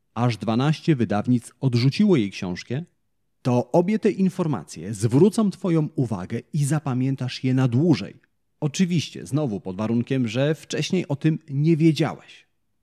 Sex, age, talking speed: male, 30-49, 130 wpm